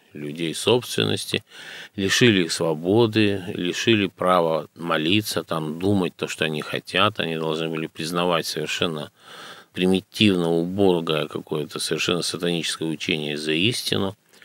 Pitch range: 80-100 Hz